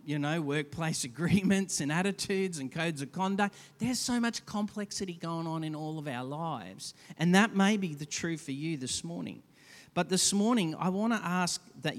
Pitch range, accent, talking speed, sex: 120-165 Hz, Australian, 195 wpm, male